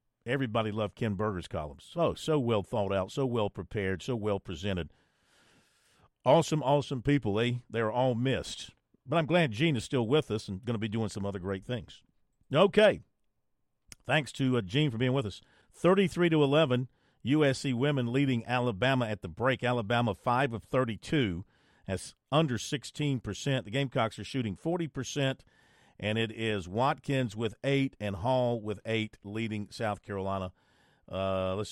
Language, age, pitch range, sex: English, 50-69, 105-135 Hz, male